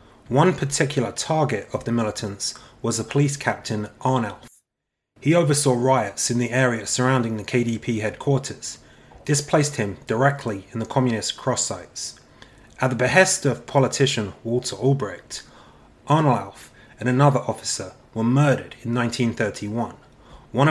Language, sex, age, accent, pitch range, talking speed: English, male, 30-49, British, 115-140 Hz, 130 wpm